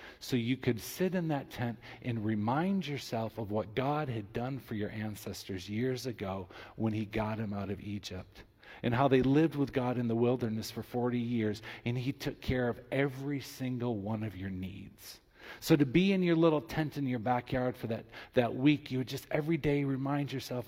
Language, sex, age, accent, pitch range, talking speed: English, male, 40-59, American, 115-145 Hz, 205 wpm